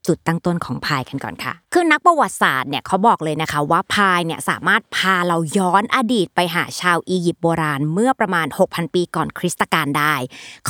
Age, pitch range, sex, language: 20-39, 165-235 Hz, female, Thai